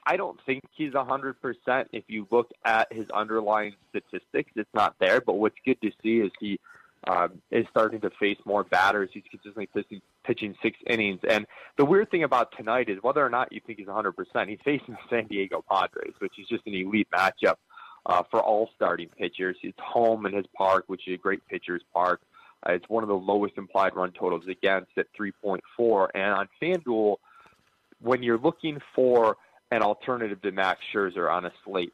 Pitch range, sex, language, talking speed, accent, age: 100-130 Hz, male, English, 195 wpm, American, 20-39